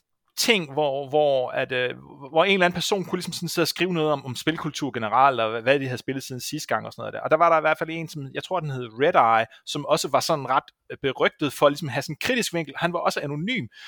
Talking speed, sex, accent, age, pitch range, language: 280 wpm, male, native, 30-49, 140-190 Hz, Danish